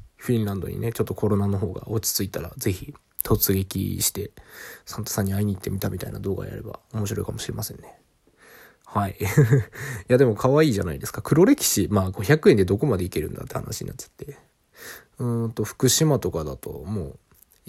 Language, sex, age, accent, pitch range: Japanese, male, 20-39, native, 100-125 Hz